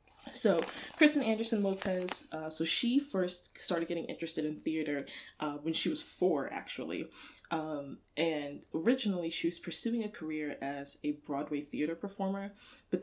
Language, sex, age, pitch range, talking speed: English, female, 20-39, 155-200 Hz, 150 wpm